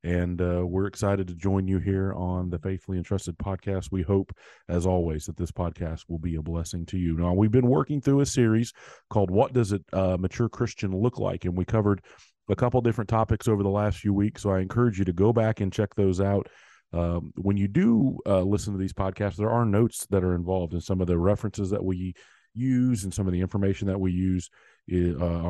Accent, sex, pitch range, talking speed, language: American, male, 90-110 Hz, 225 wpm, English